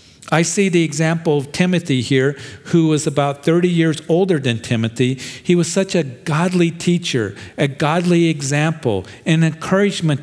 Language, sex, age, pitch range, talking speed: English, male, 50-69, 120-155 Hz, 155 wpm